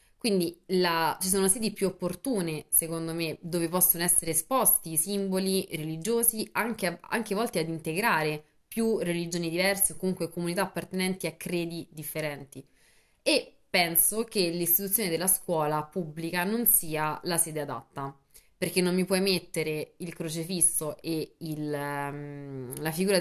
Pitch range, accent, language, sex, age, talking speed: 155-185 Hz, native, Italian, female, 20-39, 140 wpm